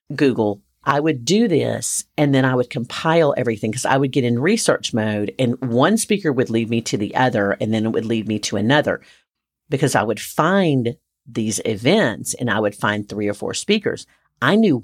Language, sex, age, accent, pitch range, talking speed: English, female, 50-69, American, 110-145 Hz, 205 wpm